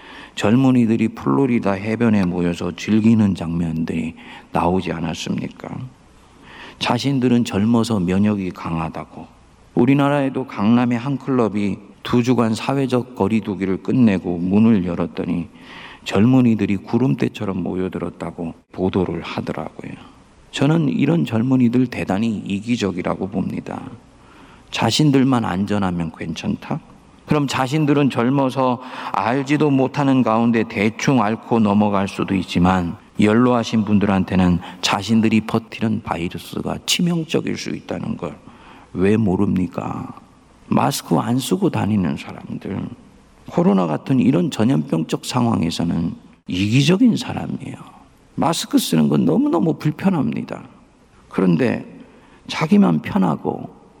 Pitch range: 95-130 Hz